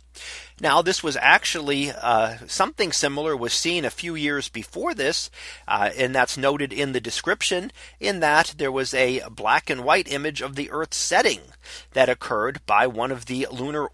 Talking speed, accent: 175 wpm, American